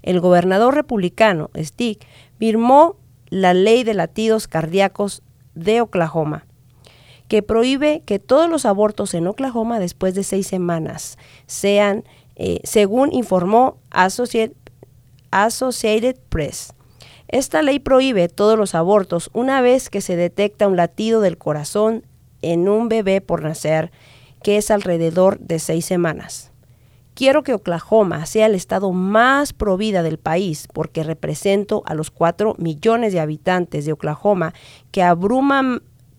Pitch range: 160-220 Hz